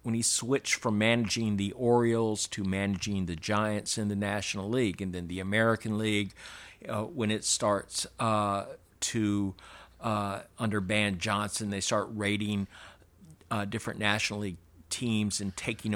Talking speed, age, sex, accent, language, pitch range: 150 wpm, 50-69, male, American, English, 95-110 Hz